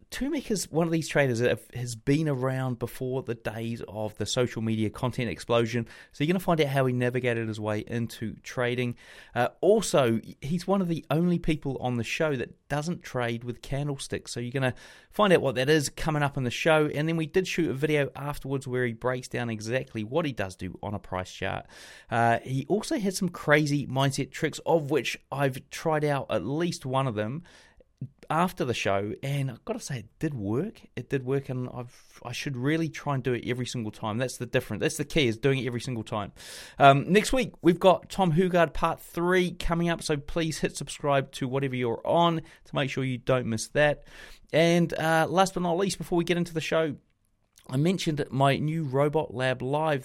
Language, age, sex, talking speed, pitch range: English, 30-49, male, 220 wpm, 120-160 Hz